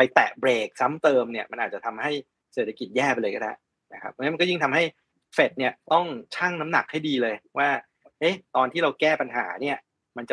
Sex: male